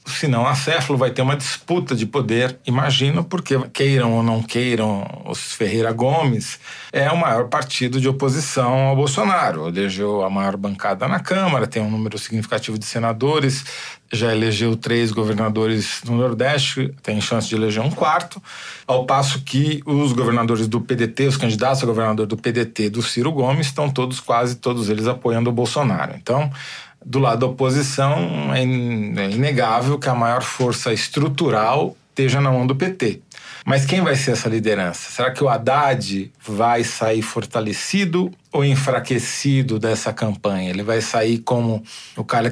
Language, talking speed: Portuguese, 160 wpm